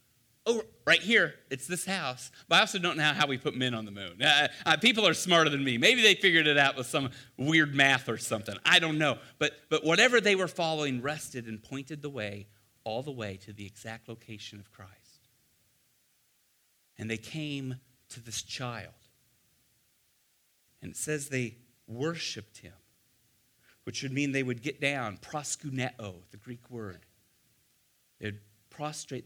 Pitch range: 115-140 Hz